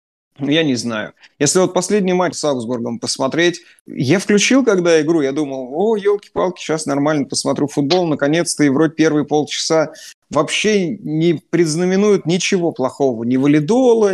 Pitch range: 125-175 Hz